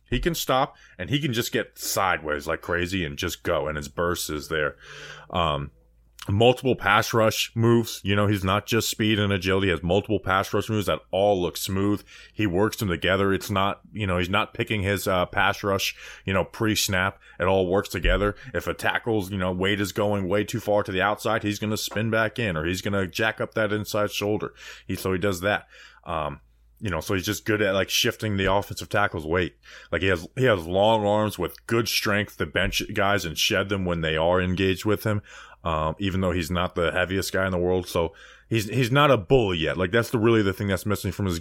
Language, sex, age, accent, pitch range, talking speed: English, male, 20-39, American, 90-105 Hz, 235 wpm